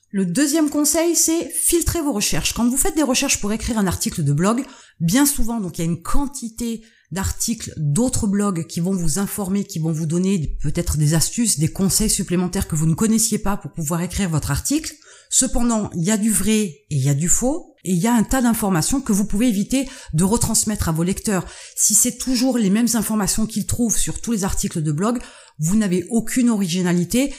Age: 30-49